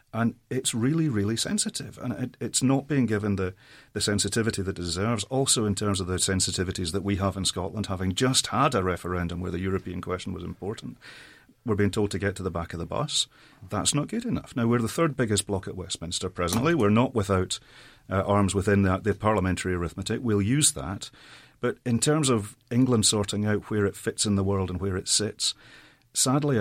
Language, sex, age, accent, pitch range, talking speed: English, male, 40-59, British, 95-115 Hz, 210 wpm